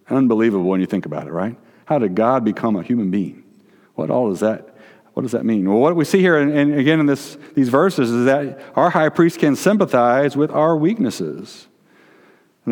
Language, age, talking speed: English, 50-69, 210 wpm